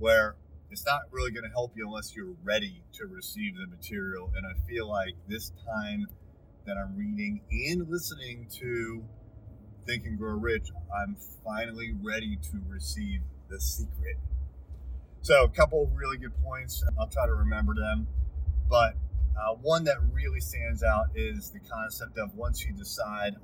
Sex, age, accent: male, 30-49, American